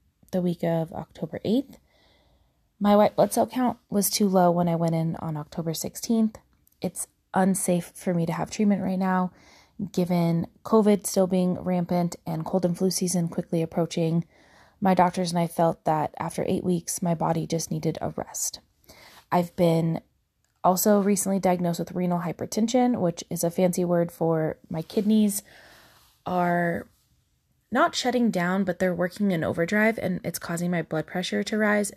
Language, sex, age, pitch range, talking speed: English, female, 20-39, 170-205 Hz, 165 wpm